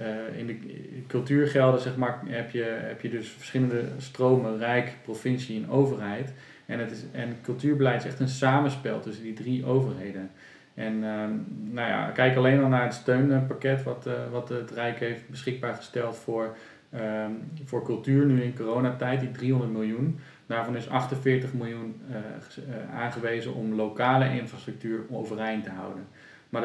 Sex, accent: male, Dutch